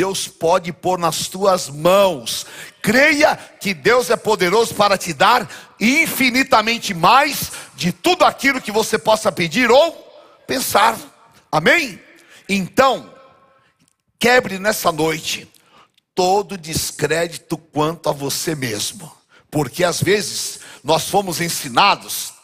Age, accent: 60-79, Brazilian